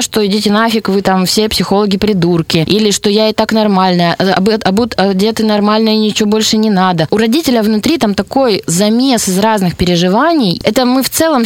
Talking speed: 190 wpm